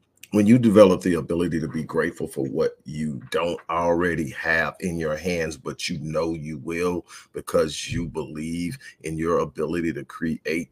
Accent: American